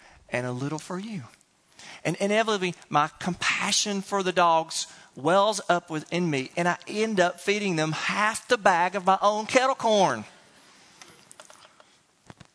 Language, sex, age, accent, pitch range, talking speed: English, male, 40-59, American, 125-180 Hz, 145 wpm